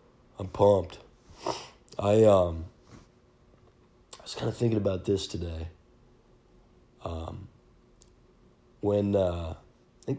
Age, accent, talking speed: 30-49, American, 100 wpm